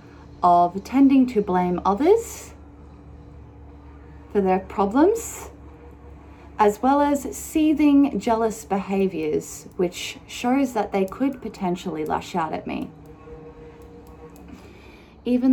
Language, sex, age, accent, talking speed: English, female, 30-49, Australian, 95 wpm